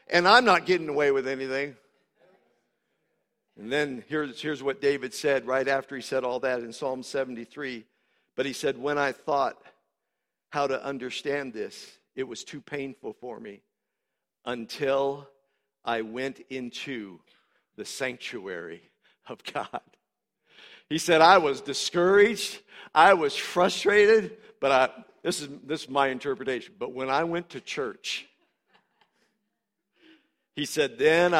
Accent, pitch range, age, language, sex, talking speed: American, 140-180 Hz, 60-79, English, male, 140 wpm